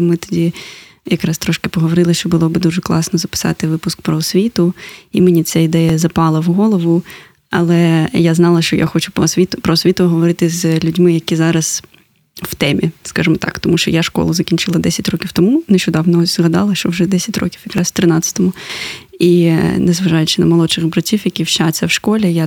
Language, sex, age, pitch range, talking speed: Ukrainian, female, 20-39, 170-190 Hz, 180 wpm